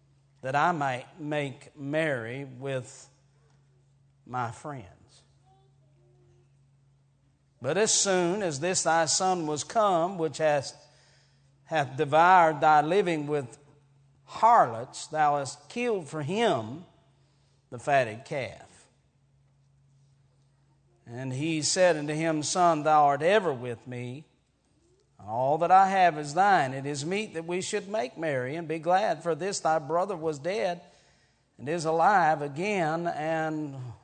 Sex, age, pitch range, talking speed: male, 50-69, 135-165 Hz, 125 wpm